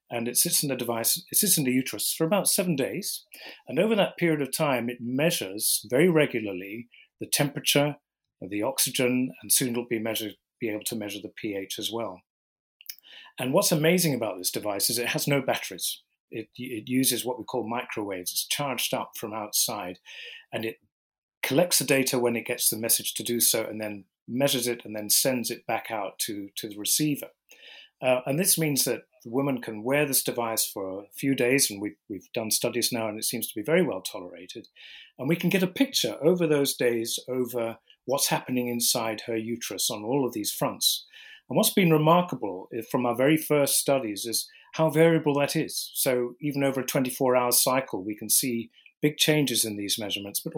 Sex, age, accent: male, 40-59, British